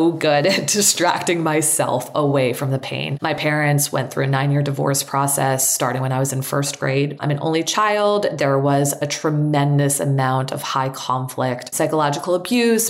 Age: 20-39